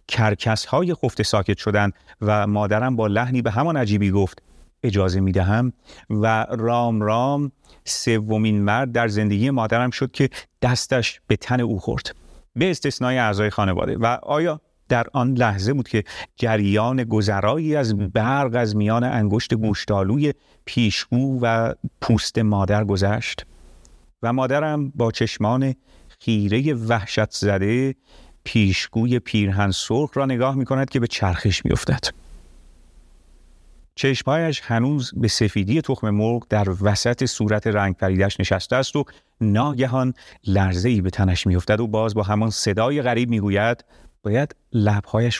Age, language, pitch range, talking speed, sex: 40-59, Persian, 100-125 Hz, 135 wpm, male